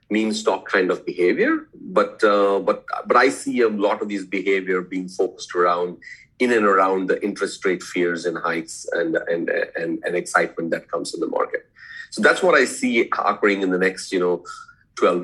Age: 40-59